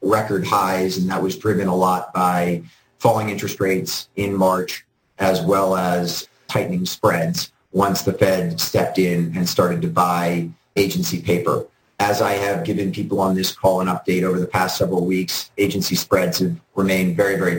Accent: American